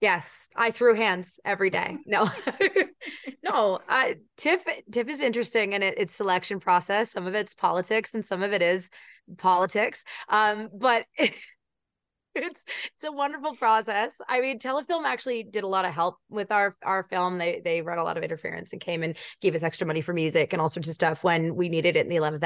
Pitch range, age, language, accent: 180-230 Hz, 20-39, English, American